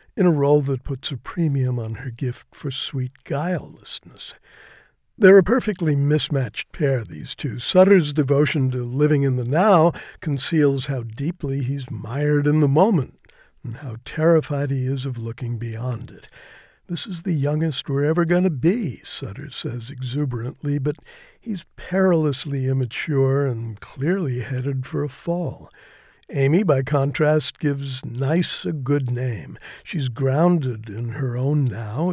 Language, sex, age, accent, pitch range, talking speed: English, male, 60-79, American, 130-160 Hz, 150 wpm